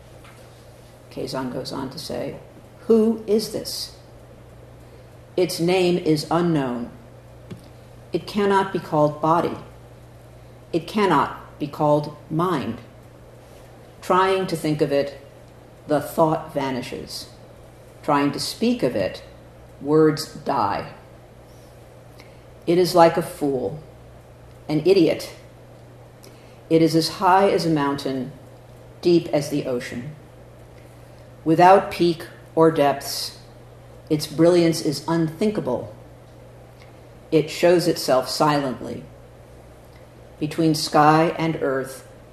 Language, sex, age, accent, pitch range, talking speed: English, female, 50-69, American, 130-170 Hz, 100 wpm